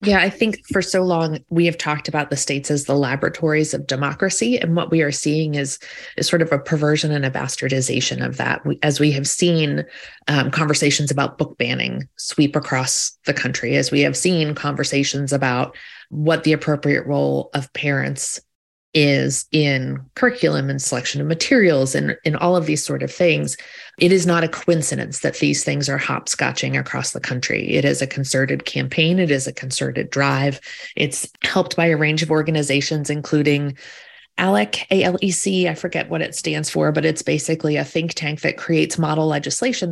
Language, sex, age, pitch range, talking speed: English, female, 30-49, 140-165 Hz, 185 wpm